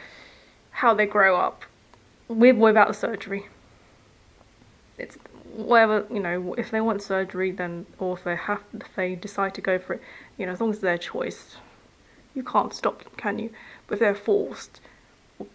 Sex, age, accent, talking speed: female, 20-39, British, 175 wpm